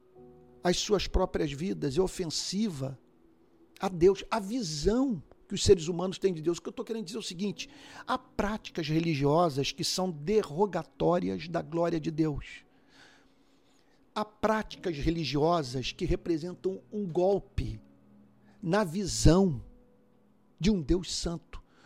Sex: male